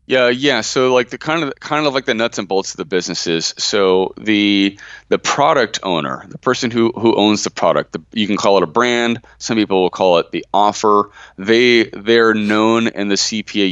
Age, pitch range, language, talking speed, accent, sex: 30-49, 90-115 Hz, English, 210 wpm, American, male